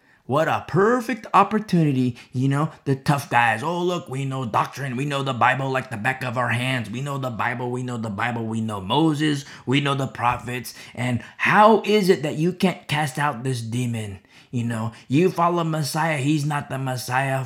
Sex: male